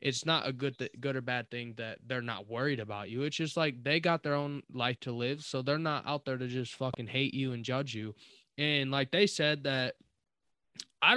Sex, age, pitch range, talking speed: male, 20-39, 130-160 Hz, 235 wpm